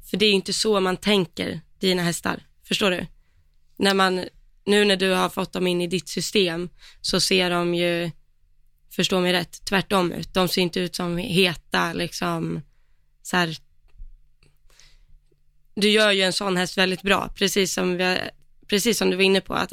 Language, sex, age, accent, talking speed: Swedish, female, 20-39, native, 180 wpm